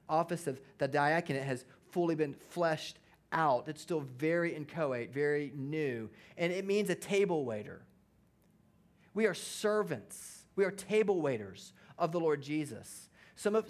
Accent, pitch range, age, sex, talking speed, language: American, 155-205 Hz, 30-49, male, 150 wpm, English